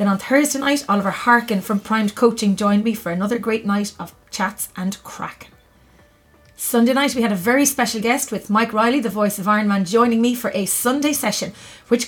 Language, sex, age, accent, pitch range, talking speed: English, female, 30-49, Irish, 205-245 Hz, 210 wpm